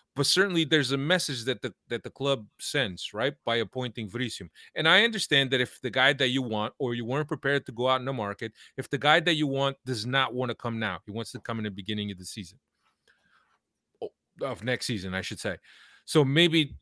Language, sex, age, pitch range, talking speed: English, male, 30-49, 115-150 Hz, 235 wpm